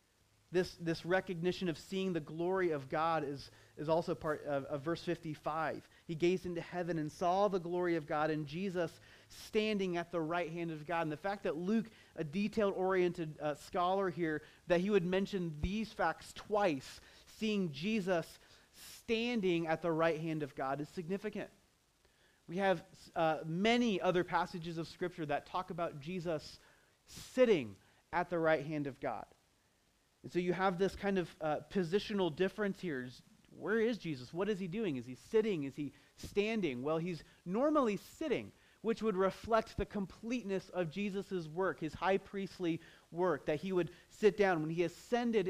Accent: American